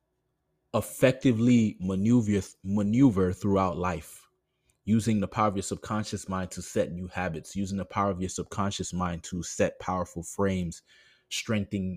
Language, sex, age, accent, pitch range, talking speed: English, male, 20-39, American, 95-110 Hz, 140 wpm